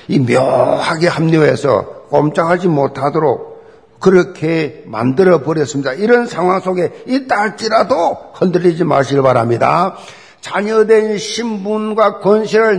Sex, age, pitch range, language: male, 50-69, 150-225 Hz, Korean